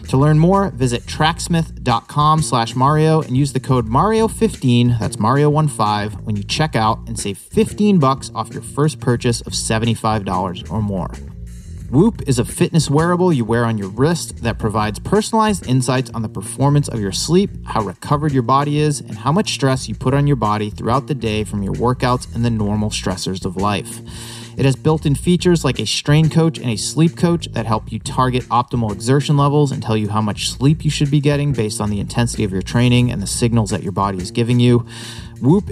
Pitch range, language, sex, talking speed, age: 110-150 Hz, English, male, 205 wpm, 30-49